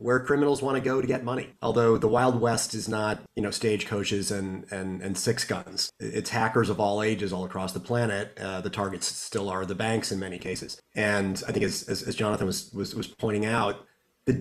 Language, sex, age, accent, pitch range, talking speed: English, male, 30-49, American, 100-125 Hz, 225 wpm